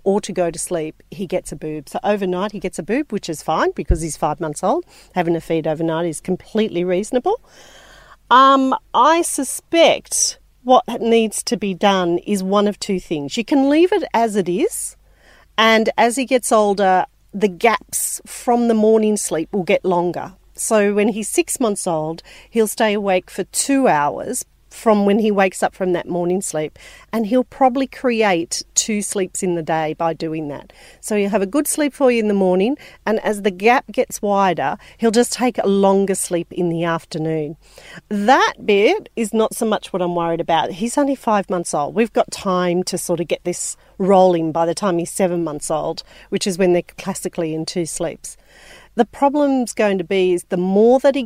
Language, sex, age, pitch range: English, female, 40-59, 175-230 Hz